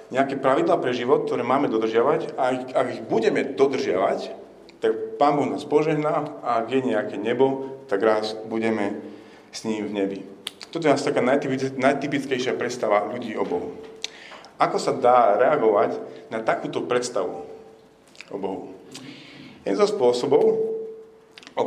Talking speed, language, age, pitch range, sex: 145 wpm, Slovak, 40-59, 110-155 Hz, male